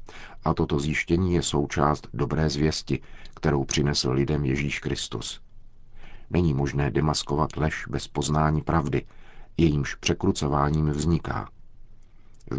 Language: Czech